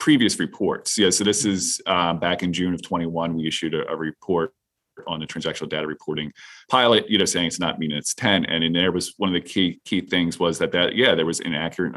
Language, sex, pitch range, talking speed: English, male, 85-100 Hz, 240 wpm